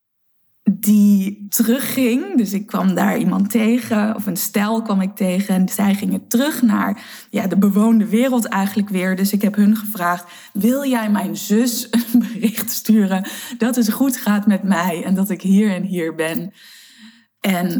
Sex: female